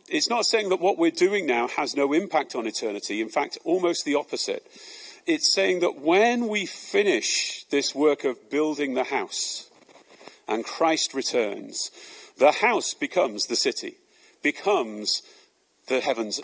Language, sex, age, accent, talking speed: English, male, 40-59, British, 150 wpm